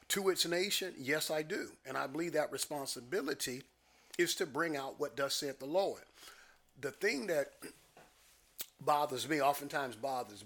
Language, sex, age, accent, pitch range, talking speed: English, male, 40-59, American, 125-160 Hz, 155 wpm